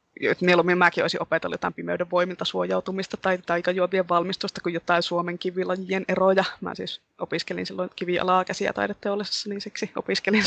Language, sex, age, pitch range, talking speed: Finnish, female, 20-39, 175-195 Hz, 160 wpm